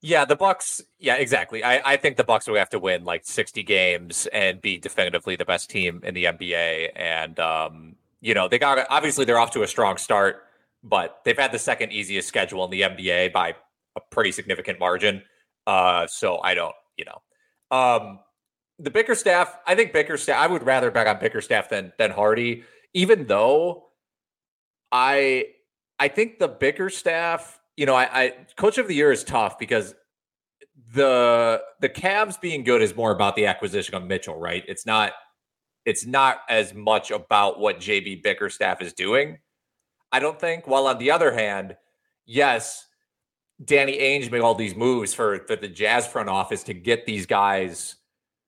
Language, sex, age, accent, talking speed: English, male, 30-49, American, 175 wpm